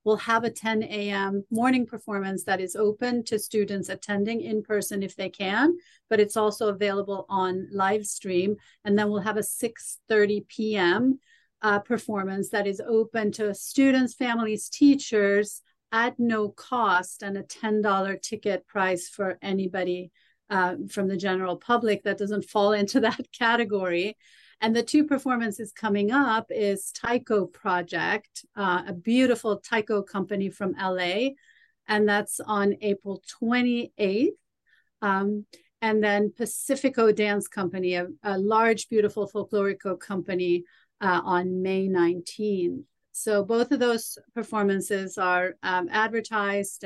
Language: English